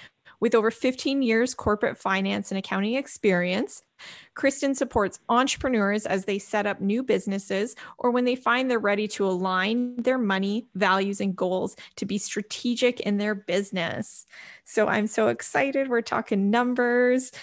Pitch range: 190-235 Hz